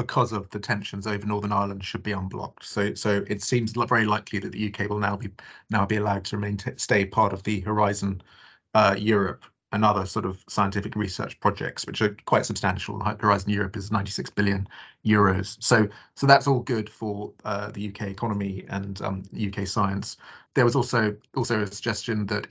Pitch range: 100-115 Hz